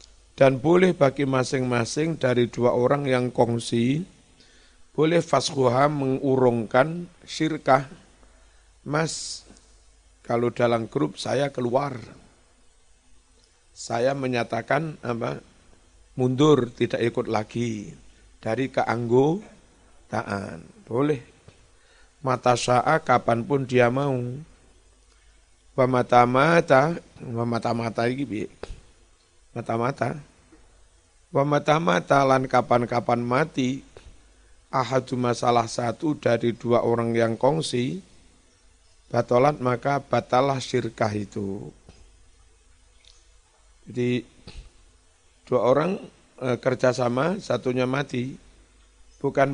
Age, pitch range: 50-69, 105-135 Hz